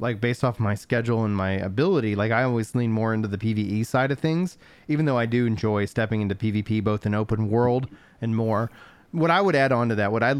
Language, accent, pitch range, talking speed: English, American, 110-135 Hz, 240 wpm